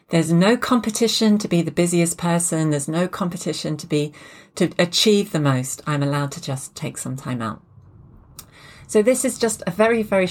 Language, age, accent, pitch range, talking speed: English, 40-59, British, 145-180 Hz, 185 wpm